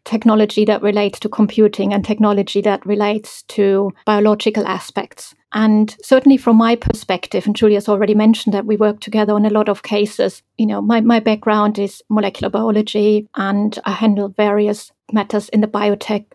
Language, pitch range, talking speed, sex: English, 210-230 Hz, 170 wpm, female